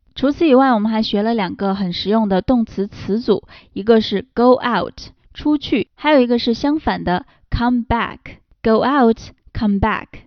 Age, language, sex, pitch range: 20-39, Chinese, female, 195-255 Hz